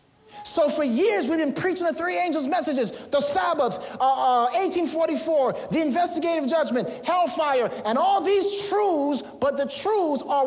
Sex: male